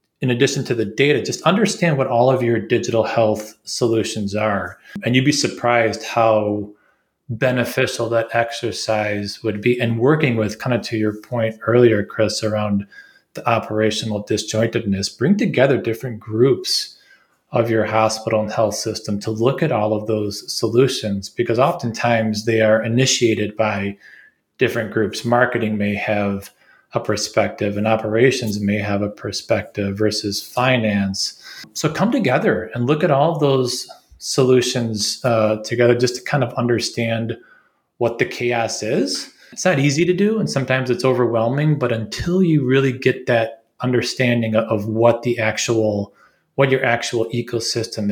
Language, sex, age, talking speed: English, male, 20-39, 150 wpm